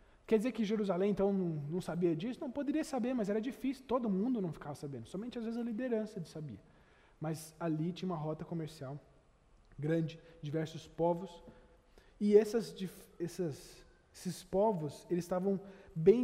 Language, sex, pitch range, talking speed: Portuguese, male, 175-225 Hz, 165 wpm